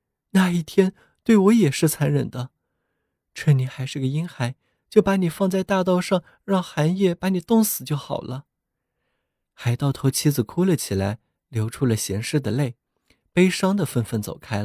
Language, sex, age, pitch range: Chinese, male, 20-39, 120-180 Hz